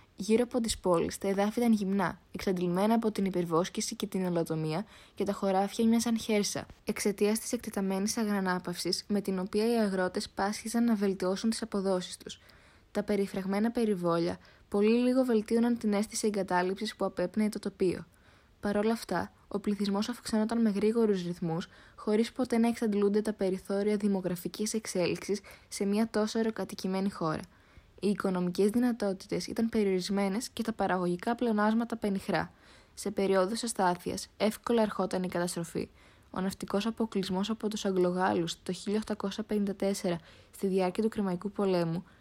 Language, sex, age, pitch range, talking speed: Greek, female, 20-39, 185-215 Hz, 140 wpm